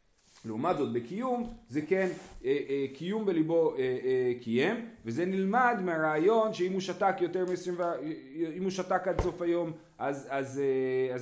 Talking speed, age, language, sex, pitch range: 155 wpm, 30-49, Hebrew, male, 125-180 Hz